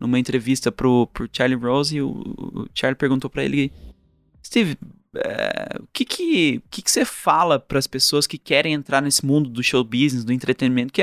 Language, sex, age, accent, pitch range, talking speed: Portuguese, male, 20-39, Brazilian, 130-175 Hz, 200 wpm